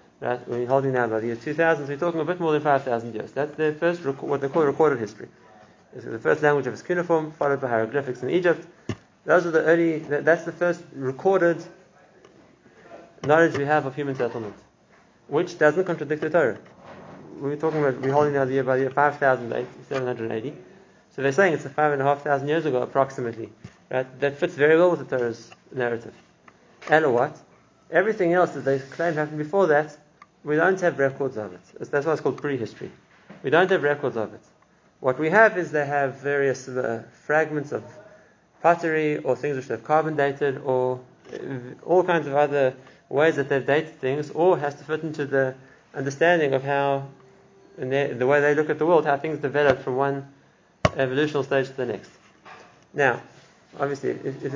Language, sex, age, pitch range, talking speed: English, male, 30-49, 130-160 Hz, 195 wpm